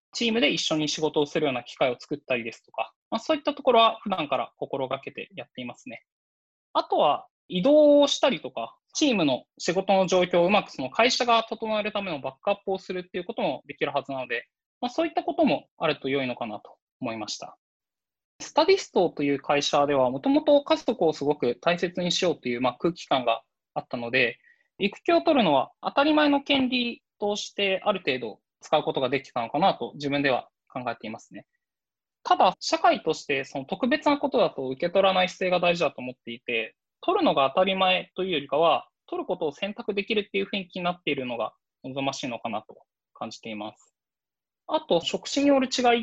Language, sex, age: Japanese, male, 20-39